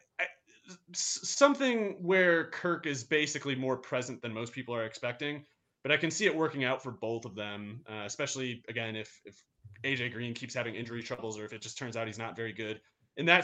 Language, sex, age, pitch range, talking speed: English, male, 30-49, 115-140 Hz, 205 wpm